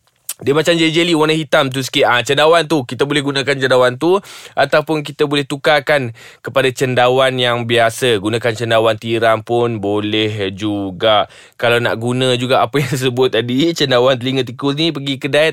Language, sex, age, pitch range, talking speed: Malay, male, 20-39, 115-150 Hz, 170 wpm